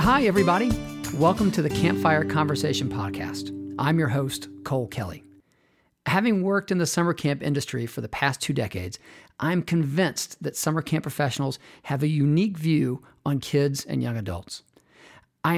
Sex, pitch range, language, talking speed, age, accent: male, 130-165 Hz, English, 160 wpm, 40-59, American